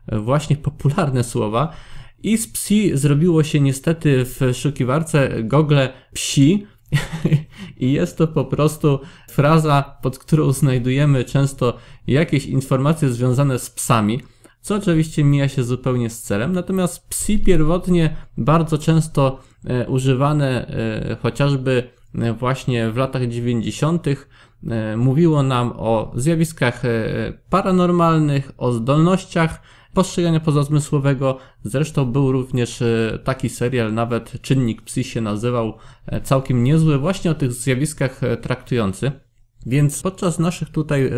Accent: native